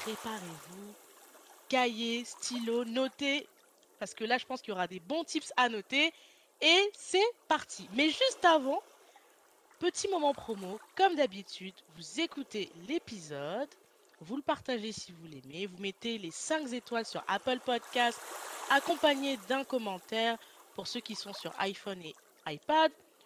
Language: French